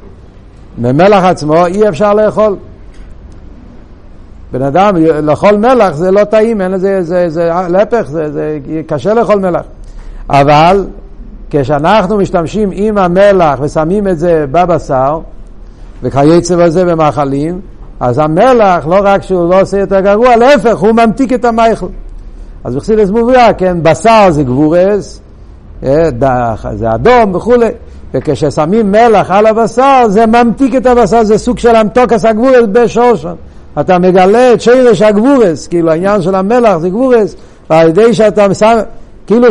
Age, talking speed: 60-79, 130 wpm